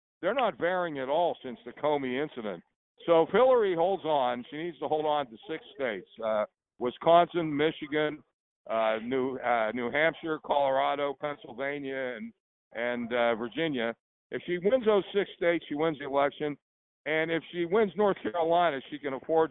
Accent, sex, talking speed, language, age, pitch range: American, male, 170 wpm, English, 60-79, 125-160 Hz